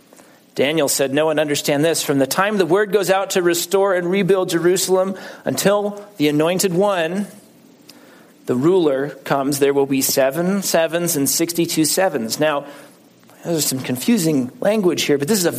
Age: 40-59